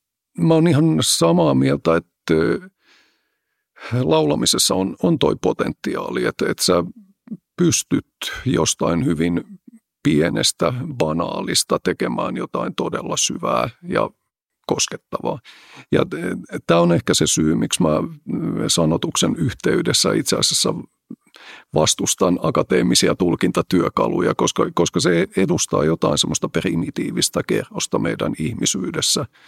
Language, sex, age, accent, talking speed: Finnish, male, 50-69, native, 105 wpm